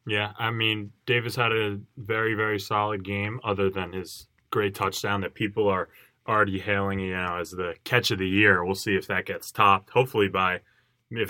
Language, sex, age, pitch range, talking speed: English, male, 20-39, 95-120 Hz, 195 wpm